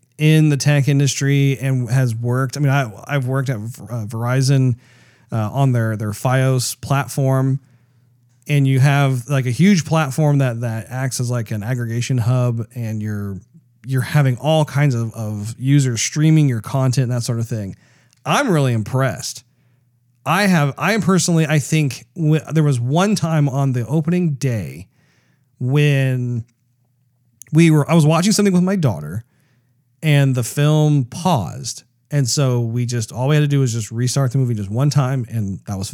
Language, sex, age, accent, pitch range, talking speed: English, male, 40-59, American, 120-145 Hz, 175 wpm